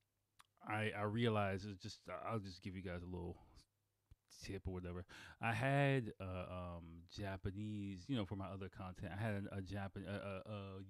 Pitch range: 90-105 Hz